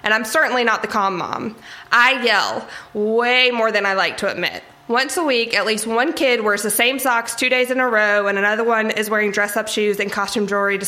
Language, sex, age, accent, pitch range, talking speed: English, female, 20-39, American, 205-240 Hz, 245 wpm